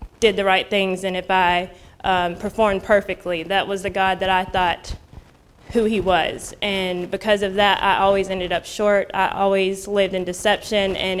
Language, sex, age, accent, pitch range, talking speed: English, female, 20-39, American, 185-210 Hz, 190 wpm